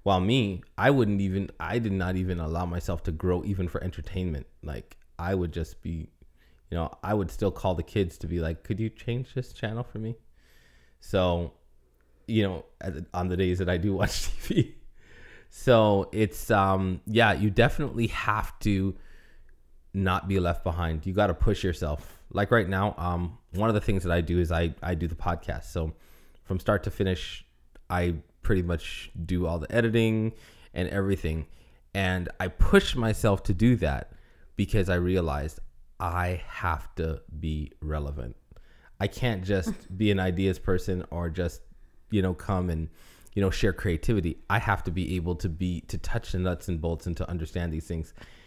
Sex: male